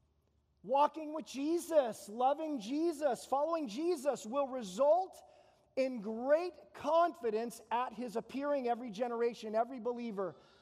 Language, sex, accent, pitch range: English, male, American, 205-280 Hz